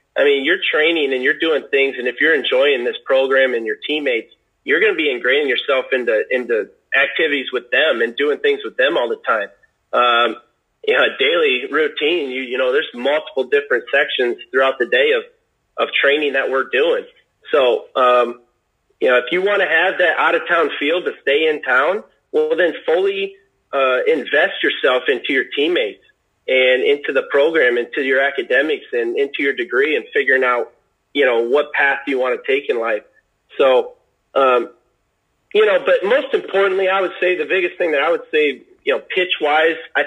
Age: 30-49